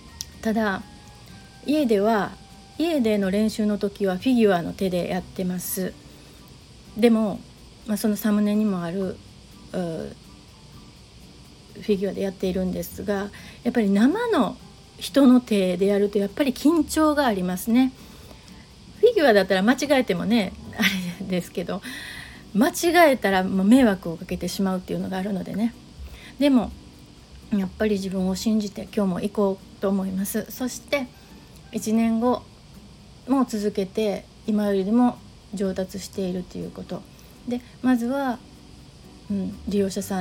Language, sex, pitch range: Japanese, female, 195-245 Hz